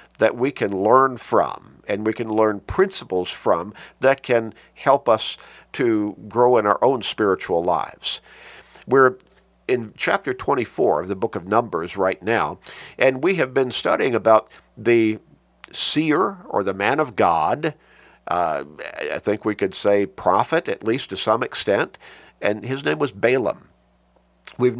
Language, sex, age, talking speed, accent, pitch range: English, male, 50-69, 155 wpm, American, 95-125 Hz